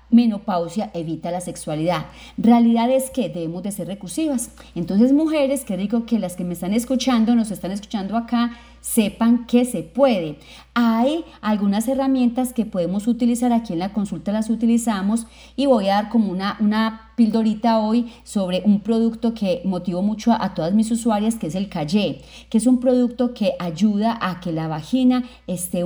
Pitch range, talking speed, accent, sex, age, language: 190-240 Hz, 175 wpm, Colombian, female, 30-49, Spanish